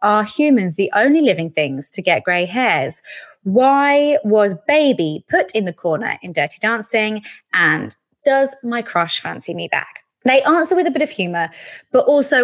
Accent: British